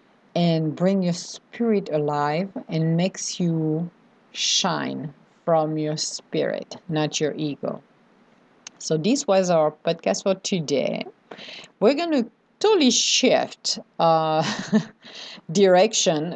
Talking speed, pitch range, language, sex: 105 wpm, 170-220 Hz, English, female